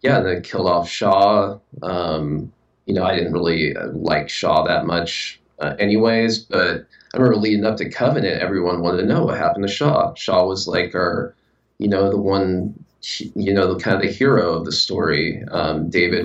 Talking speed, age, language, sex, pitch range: 195 wpm, 20-39, English, male, 85-100 Hz